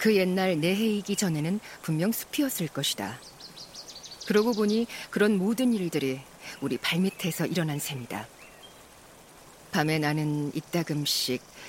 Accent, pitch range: native, 155-200 Hz